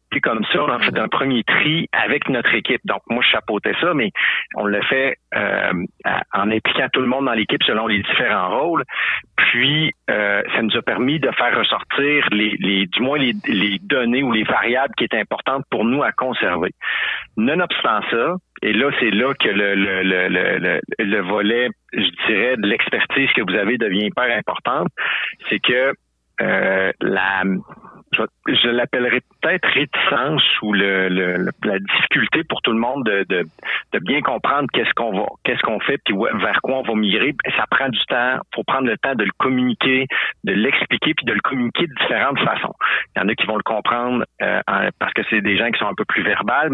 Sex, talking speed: male, 205 wpm